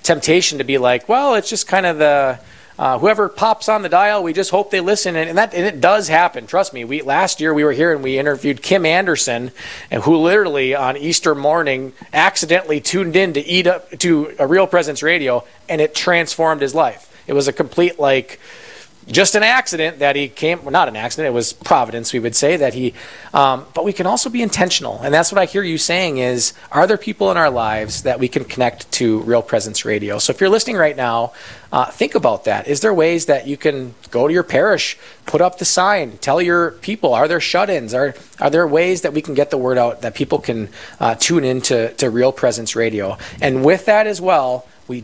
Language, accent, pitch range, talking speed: English, American, 125-170 Hz, 230 wpm